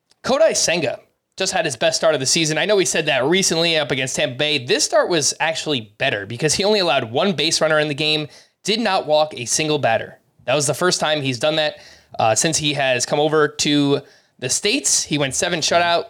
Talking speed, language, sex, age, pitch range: 230 wpm, English, male, 20-39, 145-175 Hz